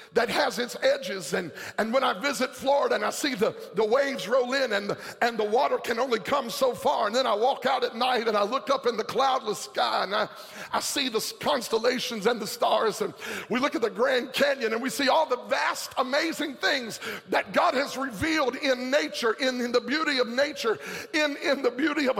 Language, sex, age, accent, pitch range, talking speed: English, male, 50-69, American, 205-275 Hz, 225 wpm